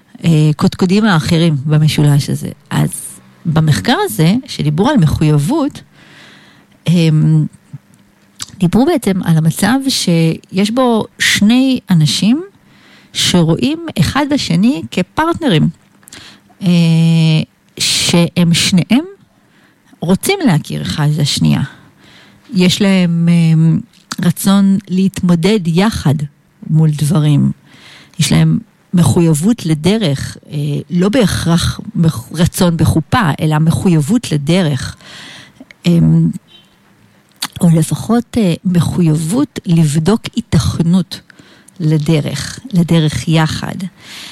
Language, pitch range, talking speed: Hebrew, 155-210 Hz, 75 wpm